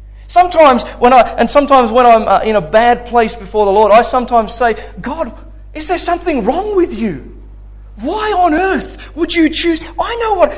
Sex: male